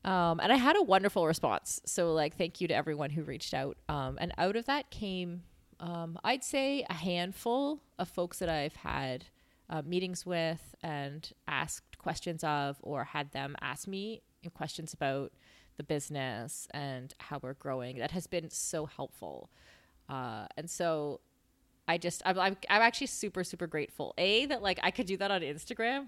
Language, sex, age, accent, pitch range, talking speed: English, female, 20-39, American, 145-185 Hz, 175 wpm